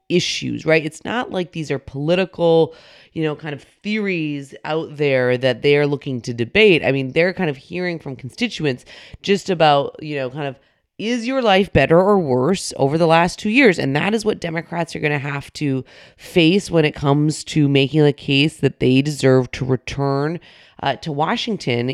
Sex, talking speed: female, 195 wpm